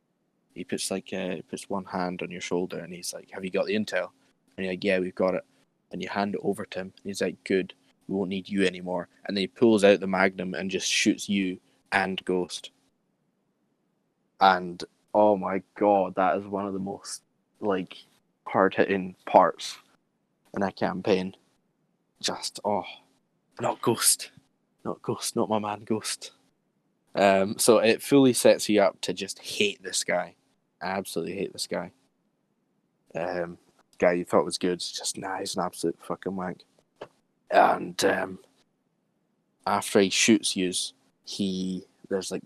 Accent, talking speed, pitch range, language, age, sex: British, 170 wpm, 90-100 Hz, English, 10-29, male